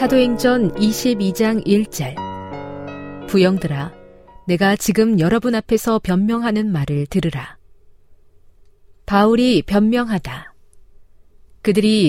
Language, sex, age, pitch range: Korean, female, 40-59, 150-215 Hz